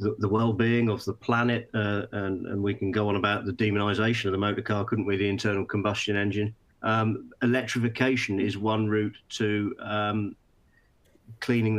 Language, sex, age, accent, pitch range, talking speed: English, male, 40-59, British, 100-115 Hz, 175 wpm